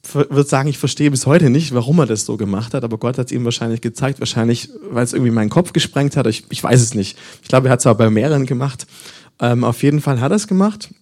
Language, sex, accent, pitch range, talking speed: English, male, German, 115-145 Hz, 270 wpm